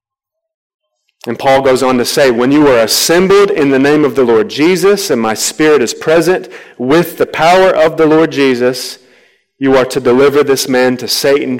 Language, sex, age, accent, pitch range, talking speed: English, male, 30-49, American, 125-150 Hz, 190 wpm